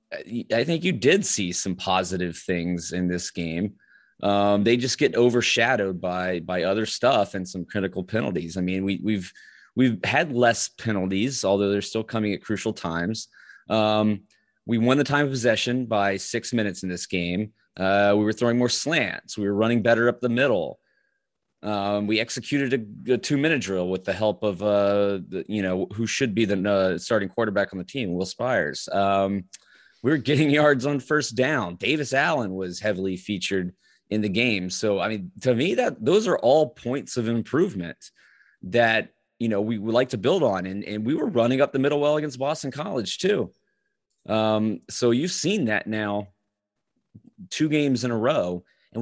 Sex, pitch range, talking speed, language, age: male, 100-130 Hz, 190 wpm, English, 20-39